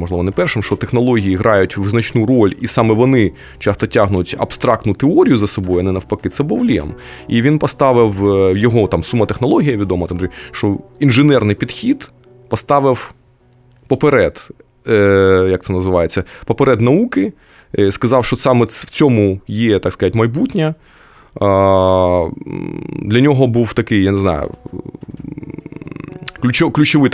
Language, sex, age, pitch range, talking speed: Ukrainian, male, 20-39, 95-130 Hz, 135 wpm